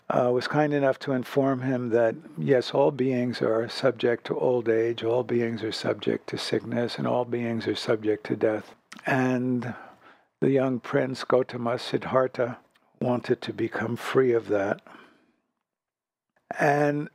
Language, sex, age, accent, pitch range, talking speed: English, male, 60-79, American, 120-135 Hz, 145 wpm